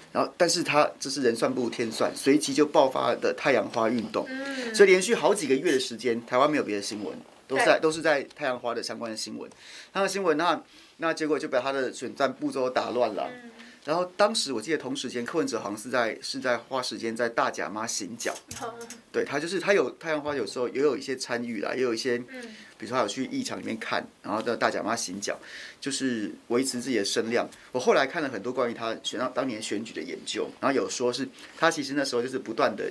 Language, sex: Chinese, male